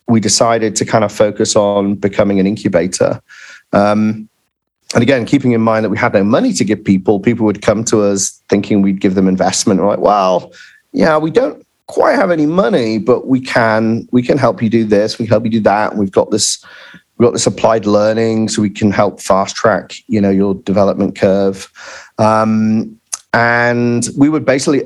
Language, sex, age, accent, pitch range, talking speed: English, male, 40-59, British, 100-115 Hz, 200 wpm